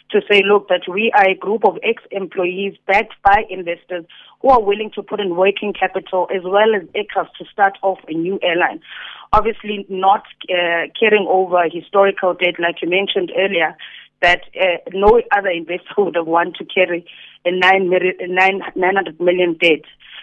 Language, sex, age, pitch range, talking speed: English, female, 30-49, 175-205 Hz, 180 wpm